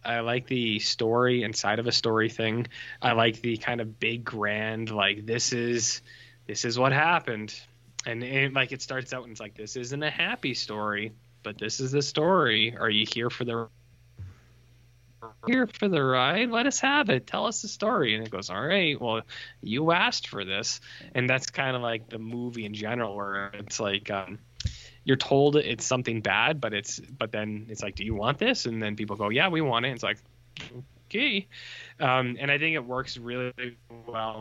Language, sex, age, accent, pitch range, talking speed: English, male, 20-39, American, 110-130 Hz, 200 wpm